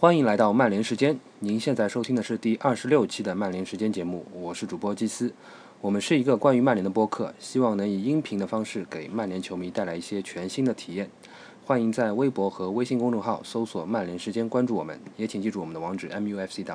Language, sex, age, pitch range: Chinese, male, 20-39, 95-120 Hz